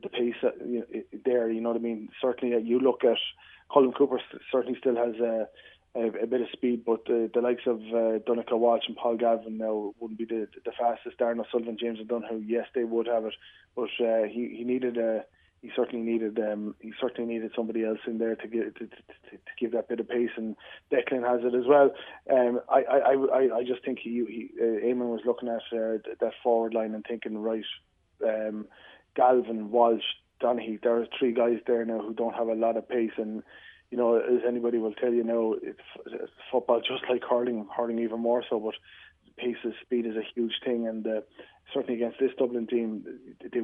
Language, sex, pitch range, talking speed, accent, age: English, male, 115-125 Hz, 215 wpm, Irish, 20-39